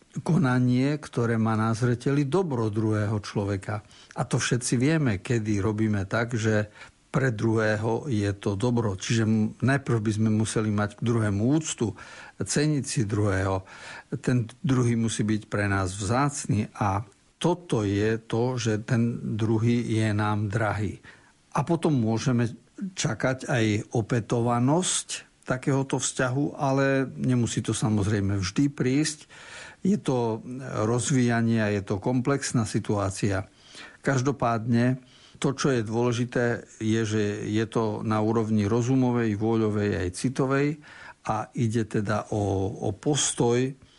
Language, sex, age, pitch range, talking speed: Slovak, male, 60-79, 110-135 Hz, 125 wpm